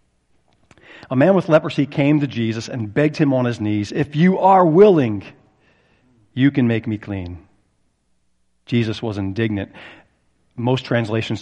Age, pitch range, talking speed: 40-59, 105-140 Hz, 140 wpm